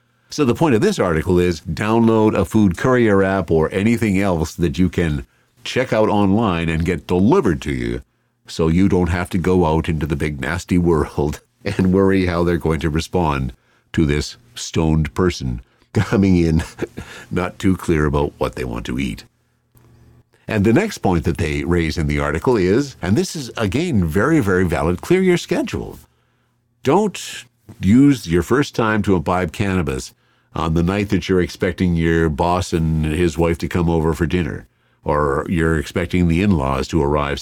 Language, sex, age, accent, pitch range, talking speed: English, male, 50-69, American, 80-115 Hz, 180 wpm